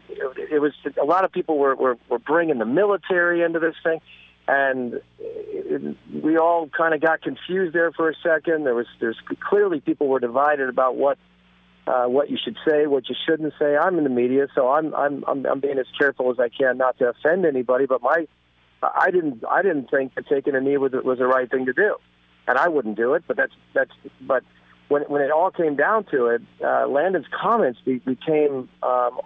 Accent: American